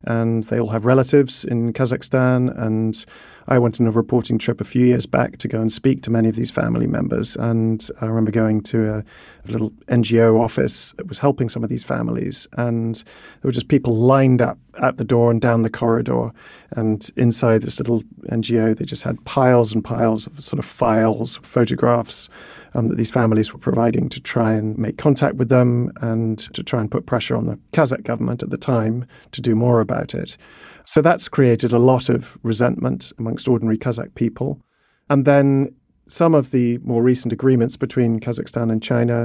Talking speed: 195 wpm